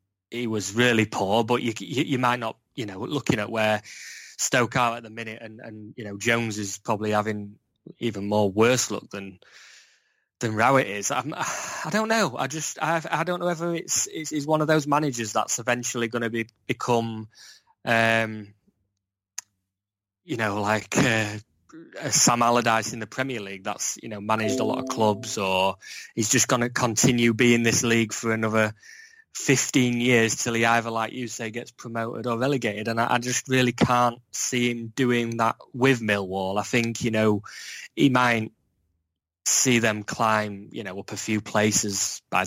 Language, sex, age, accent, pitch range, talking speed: English, male, 20-39, British, 105-120 Hz, 185 wpm